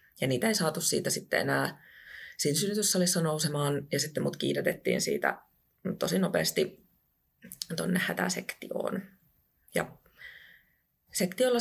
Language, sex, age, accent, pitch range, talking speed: Finnish, female, 30-49, native, 145-180 Hz, 105 wpm